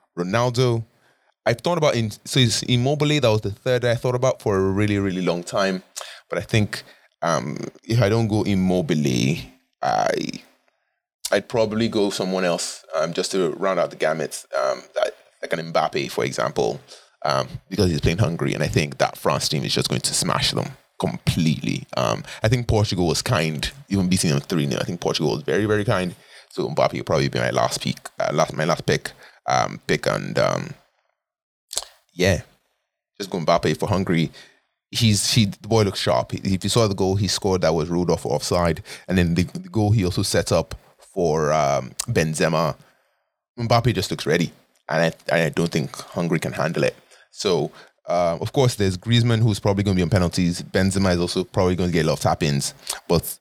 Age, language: 20-39, English